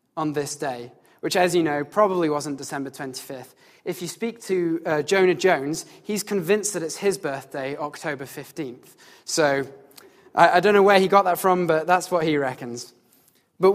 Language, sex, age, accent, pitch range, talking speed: English, male, 20-39, British, 145-180 Hz, 185 wpm